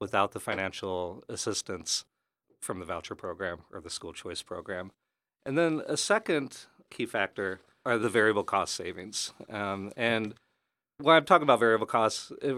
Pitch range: 90-115 Hz